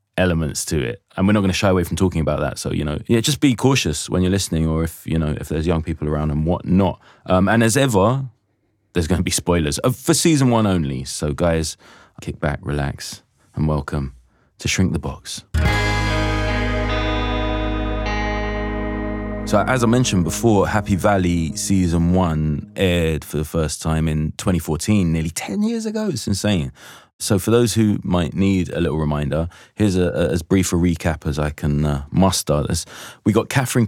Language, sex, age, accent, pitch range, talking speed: English, male, 20-39, British, 80-105 Hz, 185 wpm